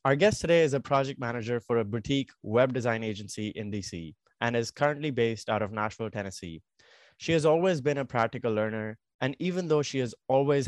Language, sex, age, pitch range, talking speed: English, male, 20-39, 105-130 Hz, 200 wpm